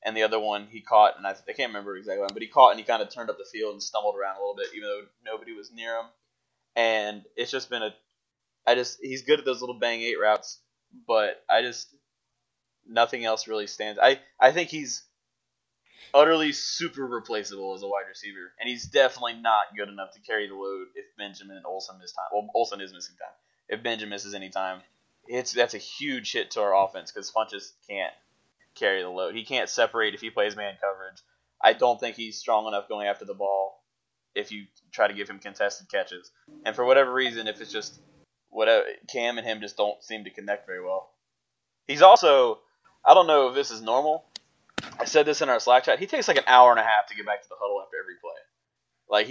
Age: 20-39